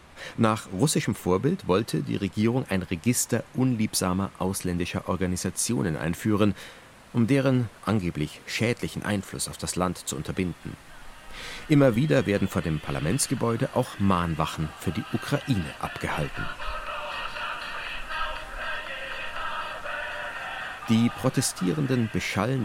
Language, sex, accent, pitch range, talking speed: German, male, German, 90-120 Hz, 100 wpm